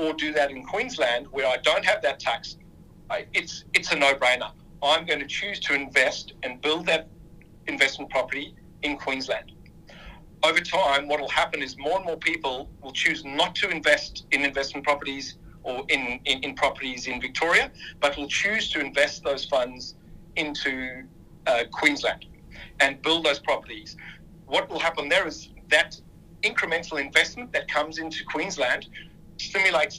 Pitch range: 130-155 Hz